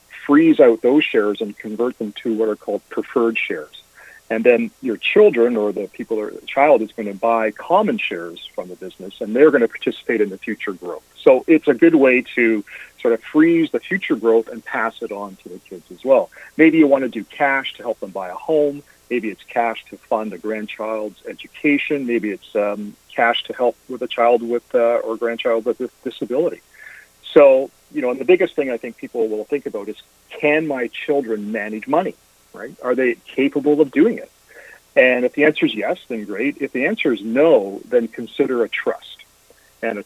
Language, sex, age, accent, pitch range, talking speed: English, male, 40-59, American, 110-150 Hz, 215 wpm